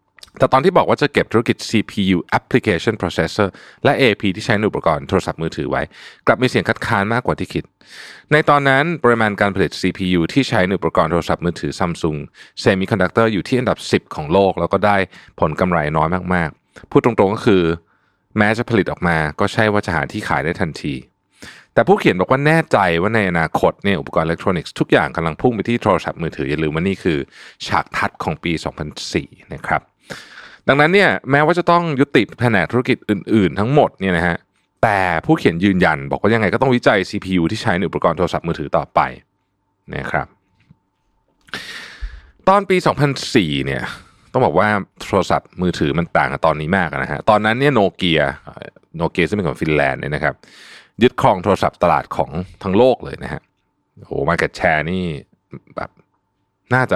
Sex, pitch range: male, 85-115 Hz